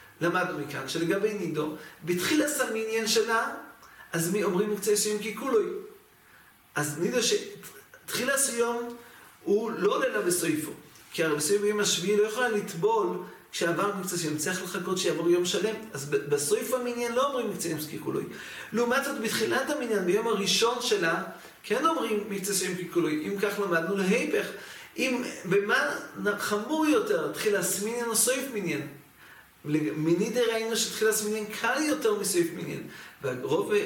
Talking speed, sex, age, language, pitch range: 85 wpm, male, 40-59, English, 180-225 Hz